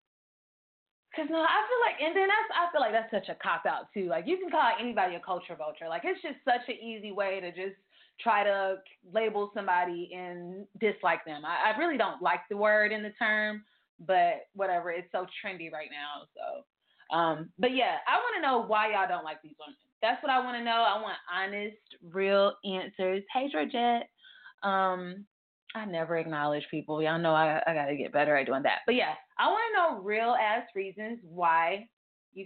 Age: 20-39